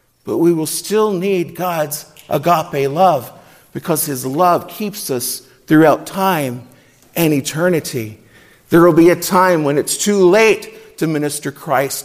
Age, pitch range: 50-69, 145-190 Hz